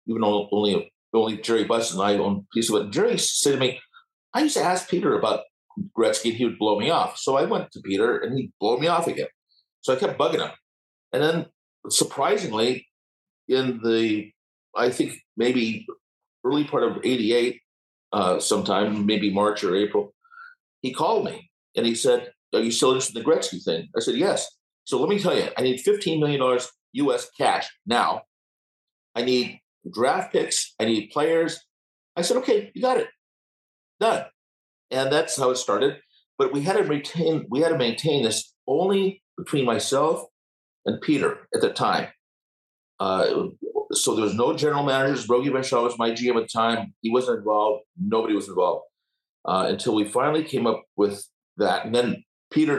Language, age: English, 50-69